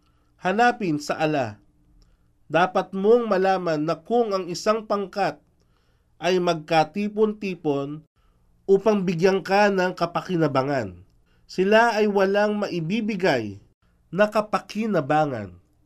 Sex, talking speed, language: male, 90 wpm, Filipino